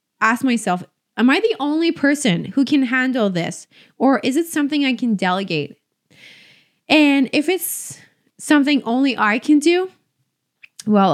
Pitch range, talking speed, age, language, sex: 195-270 Hz, 145 wpm, 20-39, English, female